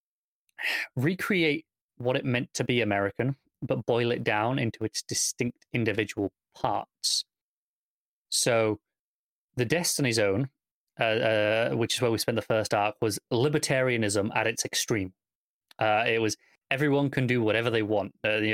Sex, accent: male, British